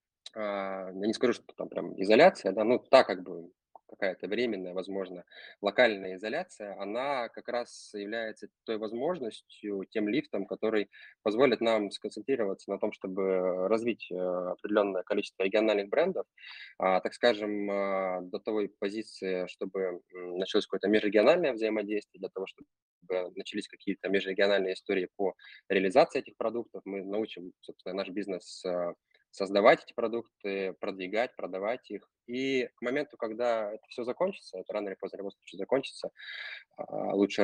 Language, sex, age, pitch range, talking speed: Russian, male, 20-39, 95-115 Hz, 130 wpm